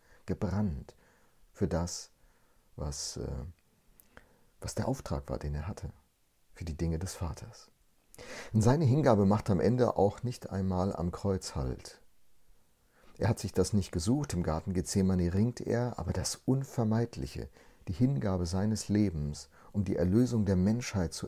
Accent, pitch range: German, 85-110 Hz